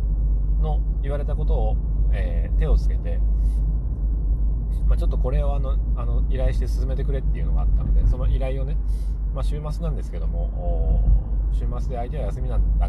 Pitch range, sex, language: 70-90 Hz, male, Japanese